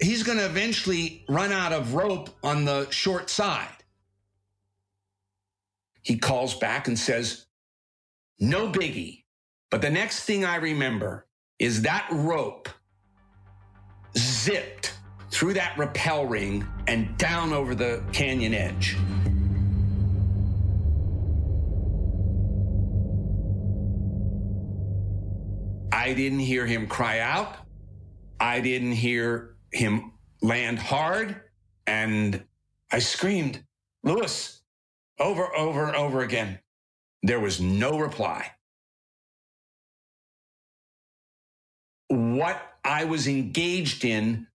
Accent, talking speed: American, 95 wpm